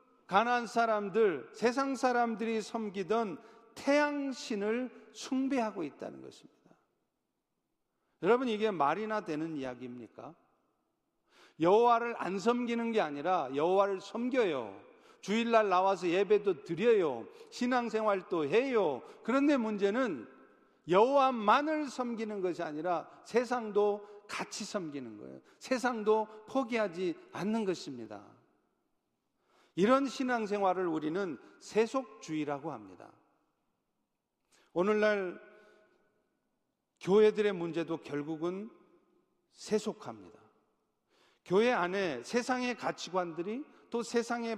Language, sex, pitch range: Korean, male, 175-235 Hz